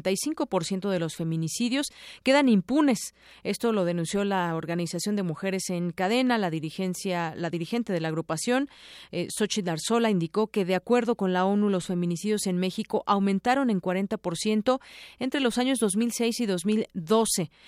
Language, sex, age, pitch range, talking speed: Spanish, female, 40-59, 180-225 Hz, 155 wpm